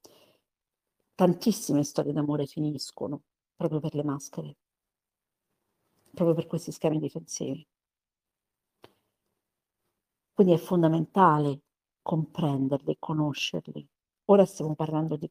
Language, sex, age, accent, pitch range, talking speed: Italian, female, 50-69, native, 145-170 Hz, 85 wpm